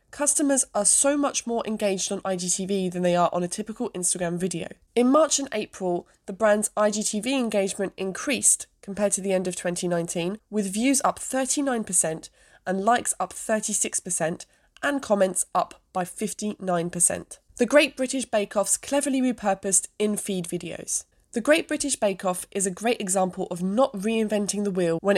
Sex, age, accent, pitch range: female, 20-39, British, 180-240 Hz